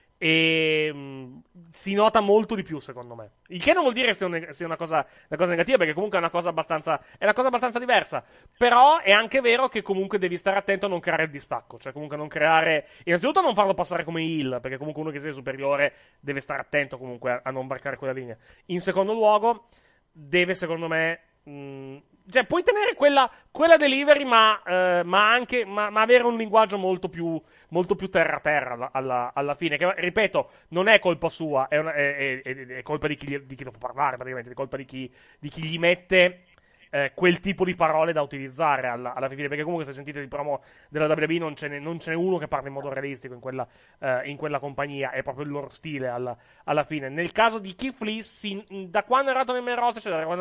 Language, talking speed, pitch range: Italian, 220 wpm, 140-195 Hz